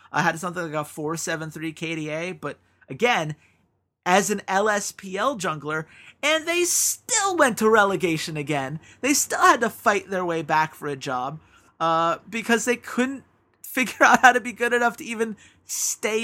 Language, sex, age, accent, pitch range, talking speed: English, male, 30-49, American, 155-220 Hz, 165 wpm